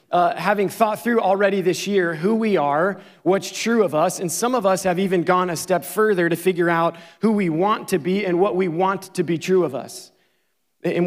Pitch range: 175-195 Hz